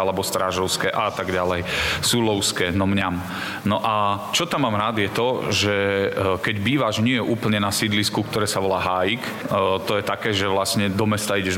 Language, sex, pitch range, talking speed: Slovak, male, 100-120 Hz, 180 wpm